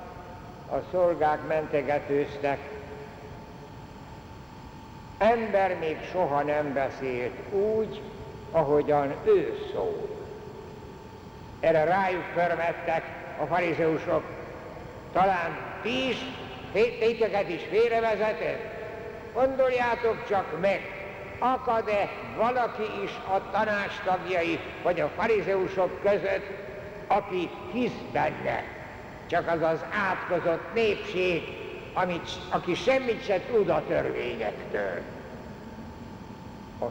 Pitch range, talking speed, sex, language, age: 140-200 Hz, 85 wpm, male, Hungarian, 60-79